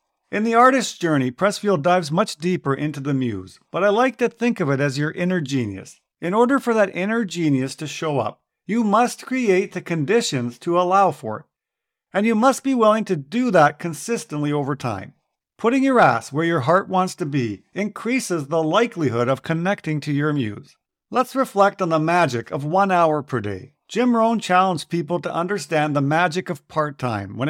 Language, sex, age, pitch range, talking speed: English, male, 50-69, 145-205 Hz, 195 wpm